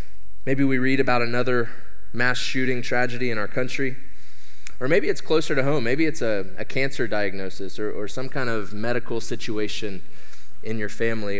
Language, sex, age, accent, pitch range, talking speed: English, male, 20-39, American, 100-130 Hz, 175 wpm